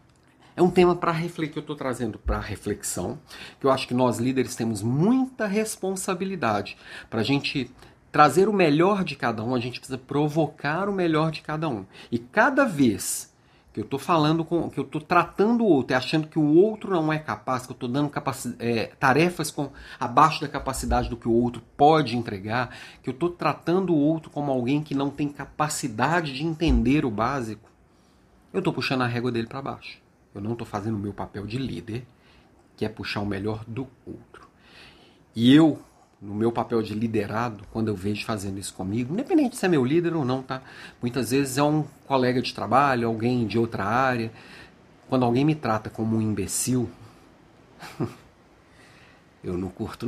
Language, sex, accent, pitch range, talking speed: Portuguese, male, Brazilian, 115-155 Hz, 185 wpm